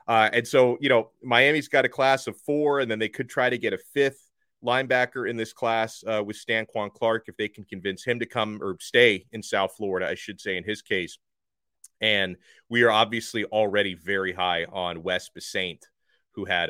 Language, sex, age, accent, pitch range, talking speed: English, male, 30-49, American, 105-160 Hz, 210 wpm